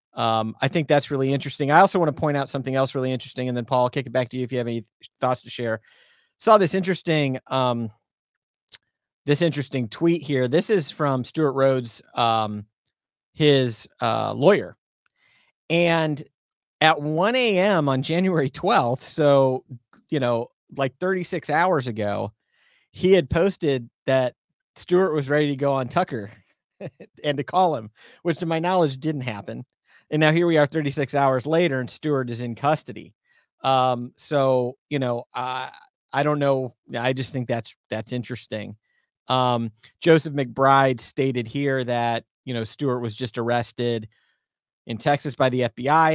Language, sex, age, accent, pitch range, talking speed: English, male, 40-59, American, 120-150 Hz, 170 wpm